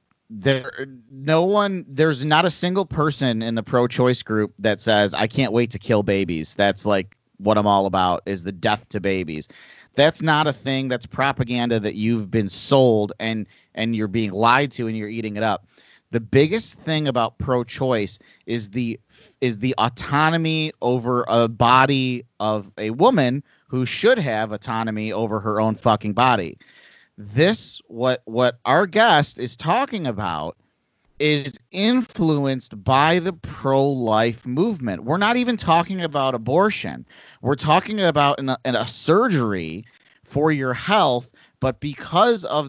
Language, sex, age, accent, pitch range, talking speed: English, male, 30-49, American, 110-155 Hz, 155 wpm